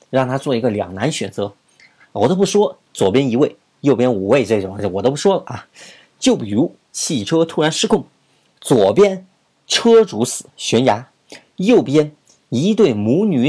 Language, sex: Chinese, male